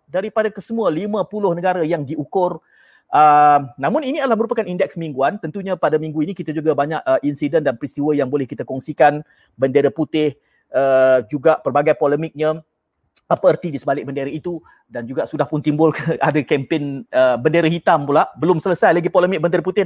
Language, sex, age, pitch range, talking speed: Malay, male, 40-59, 150-205 Hz, 170 wpm